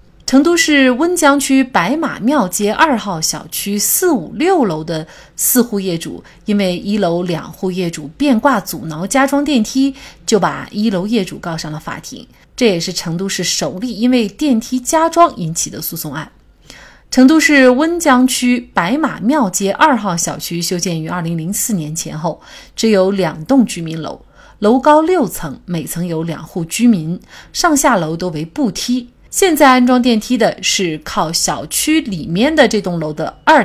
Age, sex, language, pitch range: 30-49, female, Chinese, 175-270 Hz